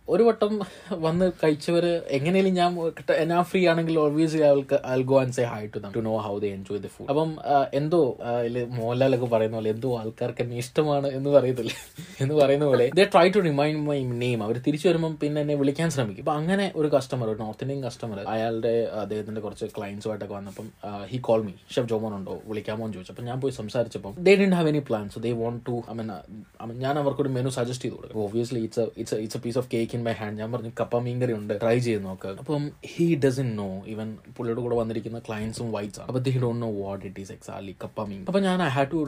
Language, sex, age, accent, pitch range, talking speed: Malayalam, male, 20-39, native, 110-150 Hz, 130 wpm